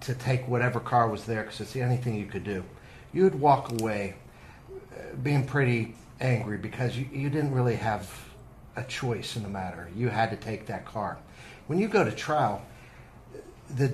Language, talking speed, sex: English, 185 wpm, male